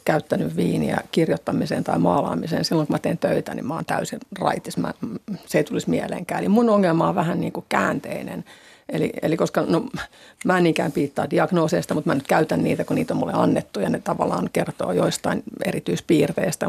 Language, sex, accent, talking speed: Finnish, female, native, 185 wpm